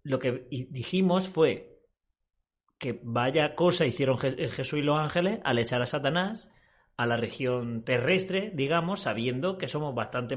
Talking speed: 145 wpm